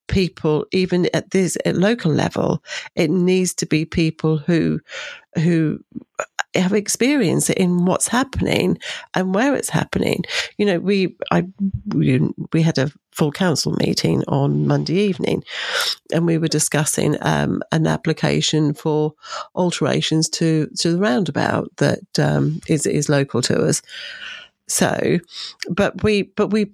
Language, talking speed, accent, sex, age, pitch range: English, 140 wpm, British, female, 40-59, 155-190 Hz